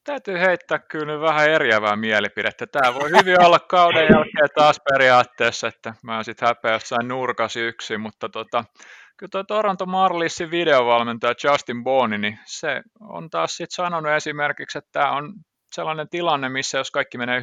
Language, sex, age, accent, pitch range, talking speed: Finnish, male, 30-49, native, 115-155 Hz, 155 wpm